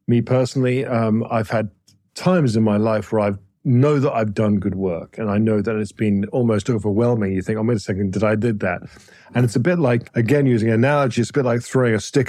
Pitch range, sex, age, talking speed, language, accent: 110-135 Hz, male, 50-69, 245 wpm, English, British